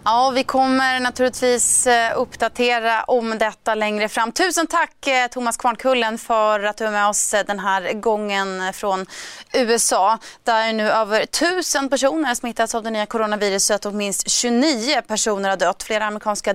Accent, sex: native, female